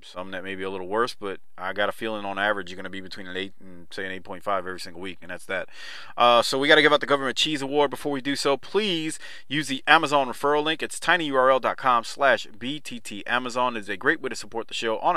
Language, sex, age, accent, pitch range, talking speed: English, male, 30-49, American, 100-145 Hz, 255 wpm